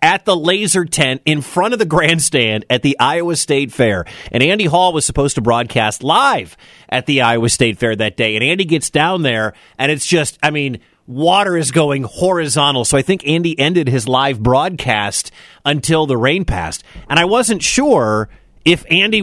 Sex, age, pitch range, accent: male, 30-49, 130-170 Hz, American